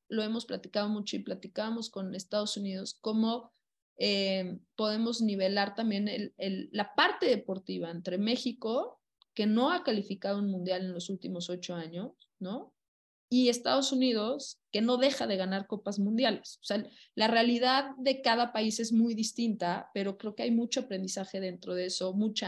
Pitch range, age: 195-255 Hz, 20-39